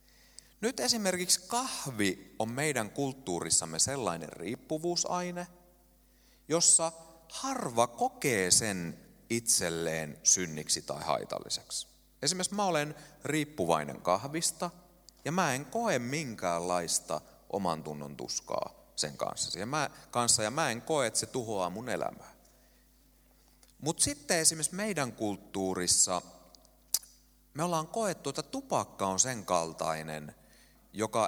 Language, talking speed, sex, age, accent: Finnish, 105 wpm, male, 30-49, native